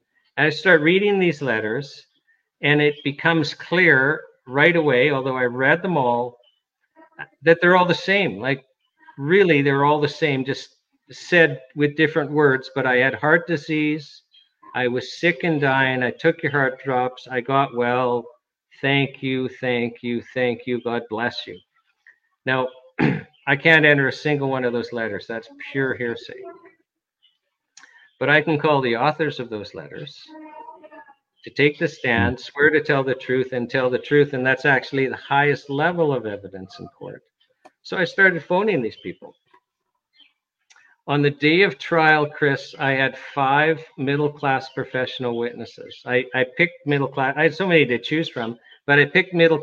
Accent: American